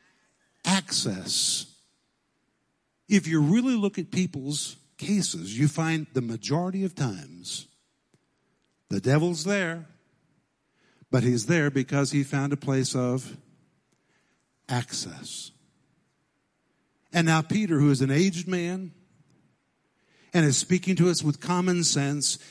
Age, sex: 50-69, male